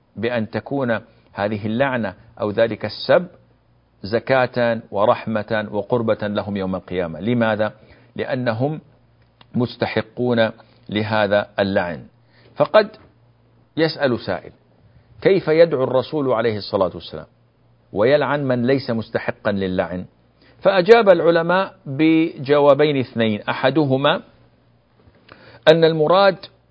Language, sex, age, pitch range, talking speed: Arabic, male, 50-69, 115-150 Hz, 90 wpm